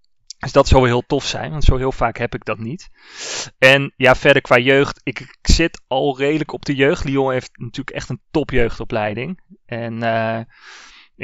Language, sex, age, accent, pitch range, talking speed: Dutch, male, 20-39, Dutch, 110-130 Hz, 185 wpm